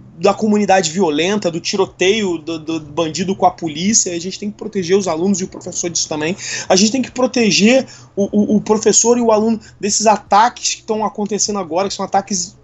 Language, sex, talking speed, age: Portuguese, male, 210 wpm, 20-39